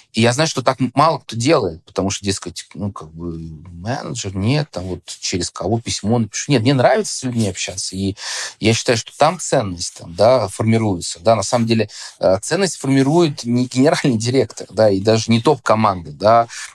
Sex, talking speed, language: male, 190 wpm, Russian